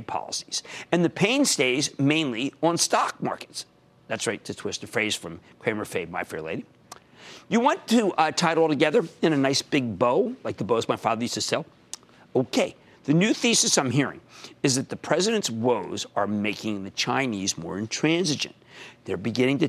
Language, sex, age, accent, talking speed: English, male, 50-69, American, 190 wpm